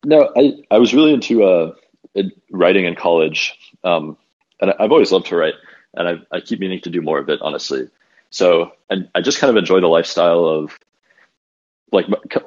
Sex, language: male, English